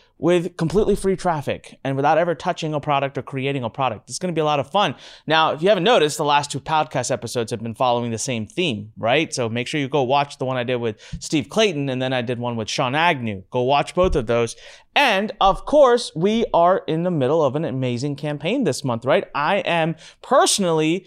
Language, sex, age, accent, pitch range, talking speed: English, male, 30-49, American, 145-220 Hz, 235 wpm